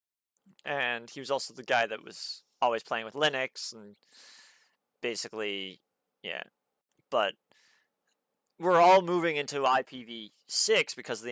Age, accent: 30-49, American